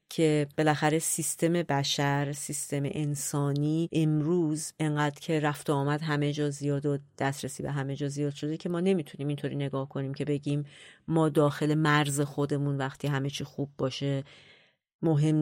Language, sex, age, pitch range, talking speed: Persian, female, 30-49, 145-165 Hz, 155 wpm